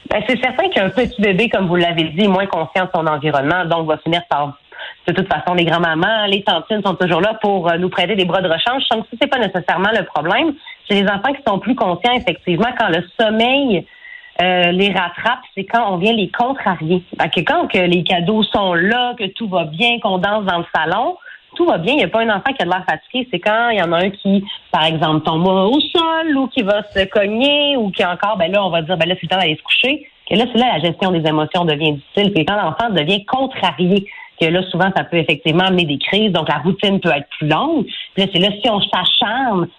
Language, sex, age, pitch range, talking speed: French, female, 30-49, 175-230 Hz, 255 wpm